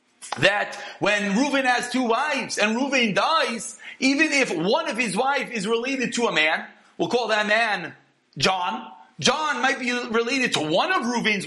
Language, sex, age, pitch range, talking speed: English, male, 40-59, 220-285 Hz, 175 wpm